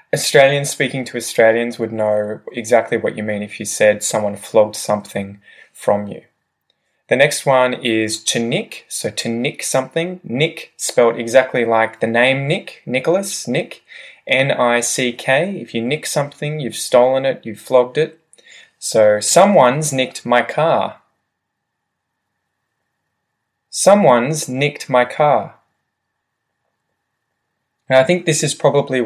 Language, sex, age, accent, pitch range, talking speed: English, male, 20-39, Australian, 115-140 Hz, 130 wpm